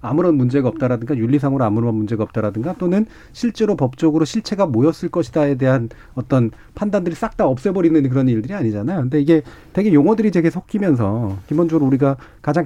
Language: Korean